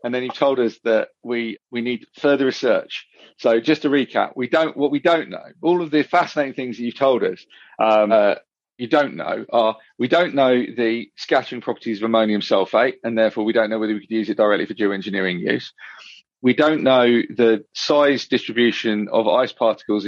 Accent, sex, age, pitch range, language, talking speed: British, male, 40-59, 110-130 Hz, English, 205 wpm